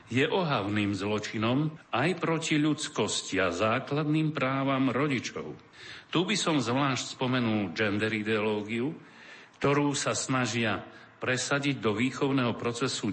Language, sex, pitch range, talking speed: Slovak, male, 105-135 Hz, 110 wpm